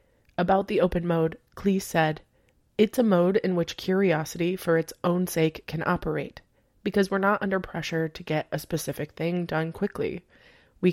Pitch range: 160-190 Hz